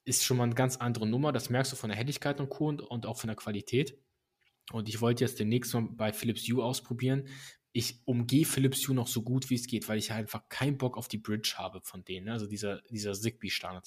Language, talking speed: German, 240 wpm